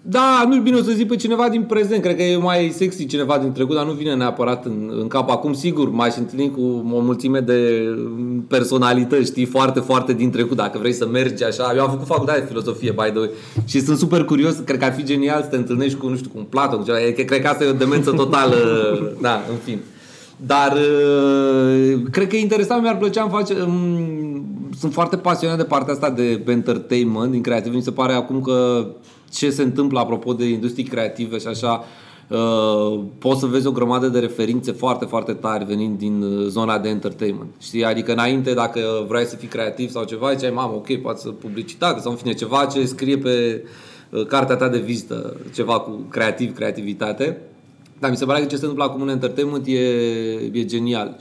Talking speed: 205 wpm